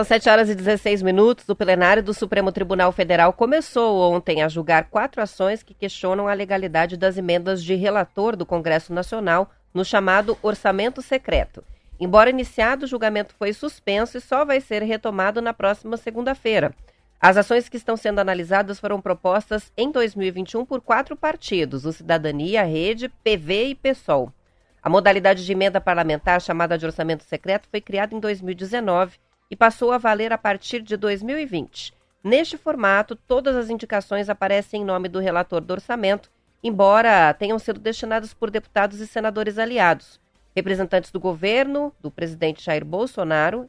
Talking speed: 160 wpm